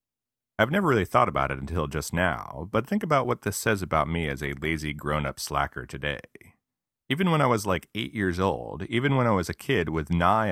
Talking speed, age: 220 wpm, 30-49